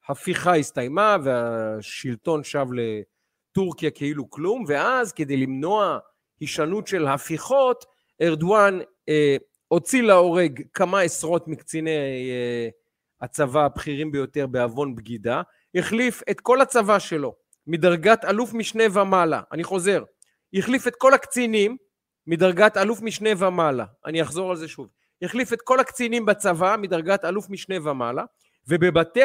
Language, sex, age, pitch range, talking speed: Hebrew, male, 40-59, 160-230 Hz, 125 wpm